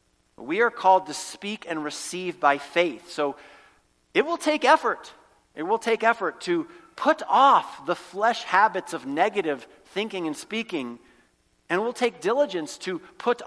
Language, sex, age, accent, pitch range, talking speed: English, male, 40-59, American, 155-230 Hz, 160 wpm